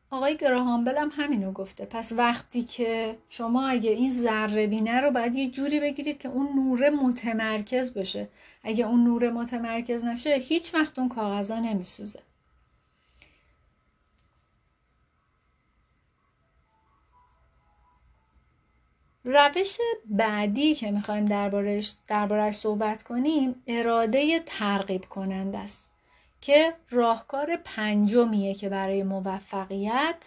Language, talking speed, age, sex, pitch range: Persian, 105 wpm, 30-49, female, 195-255 Hz